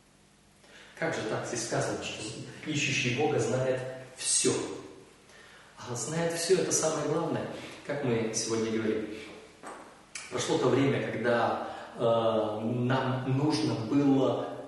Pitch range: 115-165 Hz